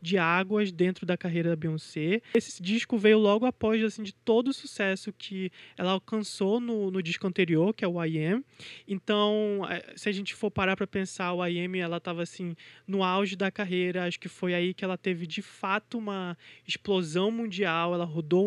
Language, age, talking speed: Portuguese, 20-39, 200 wpm